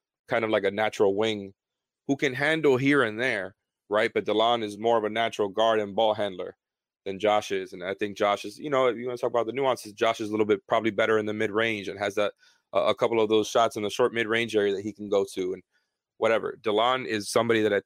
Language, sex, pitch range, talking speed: English, male, 105-120 Hz, 260 wpm